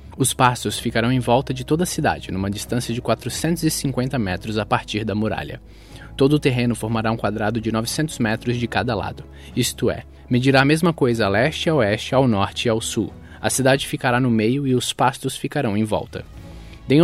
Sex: male